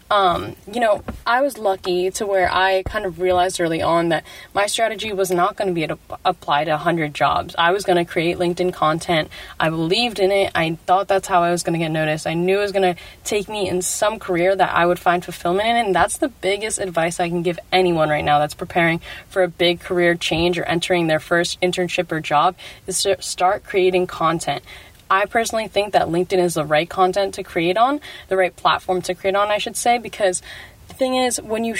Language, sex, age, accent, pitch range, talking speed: English, female, 10-29, American, 170-200 Hz, 230 wpm